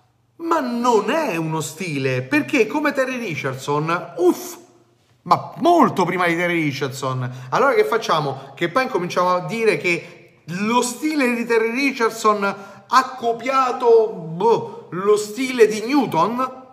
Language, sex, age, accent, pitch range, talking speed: Italian, male, 30-49, native, 160-250 Hz, 135 wpm